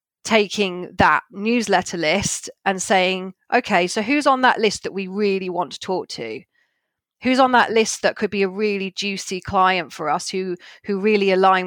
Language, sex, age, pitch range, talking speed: English, female, 30-49, 180-205 Hz, 185 wpm